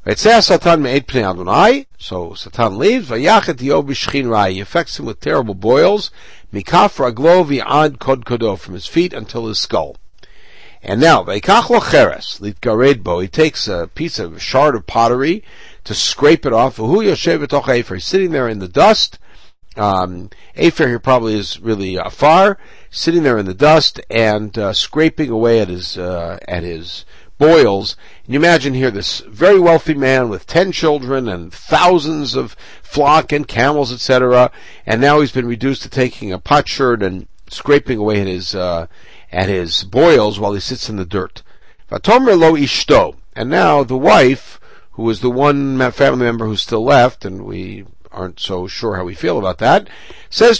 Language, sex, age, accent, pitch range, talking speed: English, male, 60-79, American, 100-150 Hz, 145 wpm